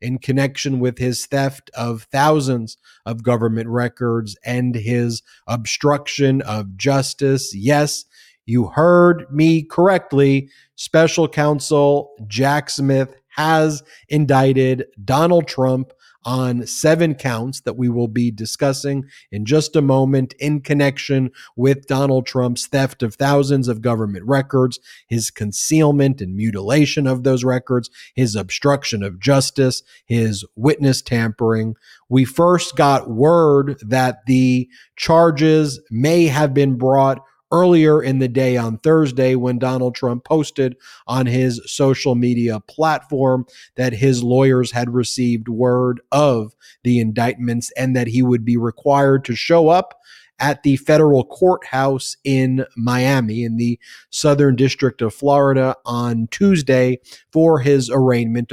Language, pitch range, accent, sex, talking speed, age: English, 120-145 Hz, American, male, 130 wpm, 30-49